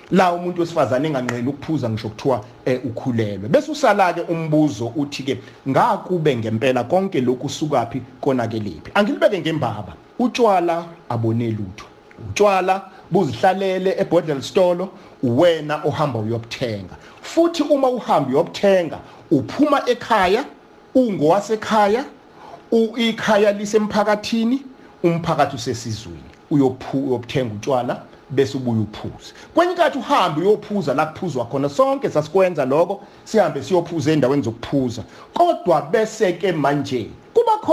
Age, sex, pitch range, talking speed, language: 50-69, male, 130-200 Hz, 115 wpm, English